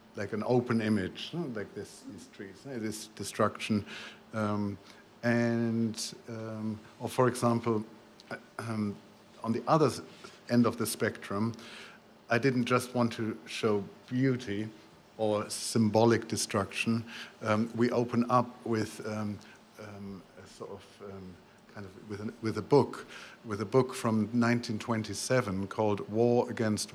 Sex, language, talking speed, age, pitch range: male, English, 135 wpm, 50-69, 105-115 Hz